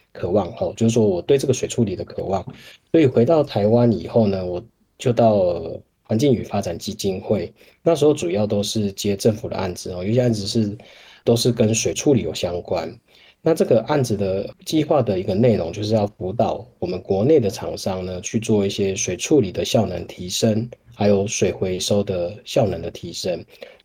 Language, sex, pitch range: Chinese, male, 100-120 Hz